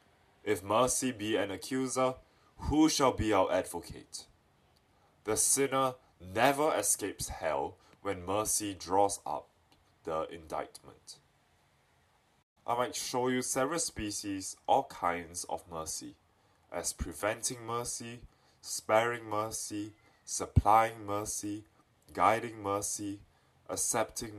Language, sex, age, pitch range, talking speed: English, male, 20-39, 100-125 Hz, 100 wpm